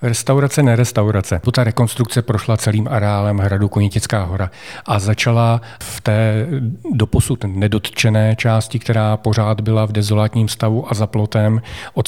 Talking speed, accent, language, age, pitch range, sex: 135 wpm, native, Czech, 40-59, 105-115 Hz, male